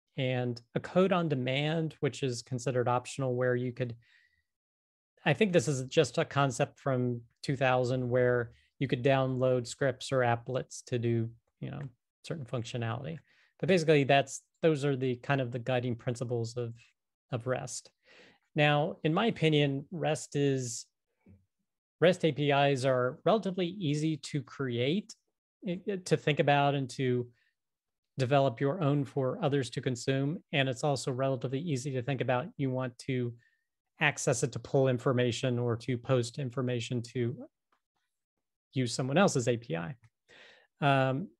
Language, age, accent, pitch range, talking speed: English, 40-59, American, 125-150 Hz, 145 wpm